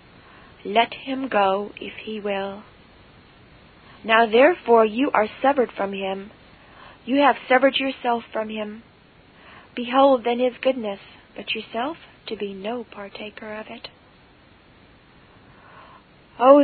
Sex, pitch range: female, 205-245 Hz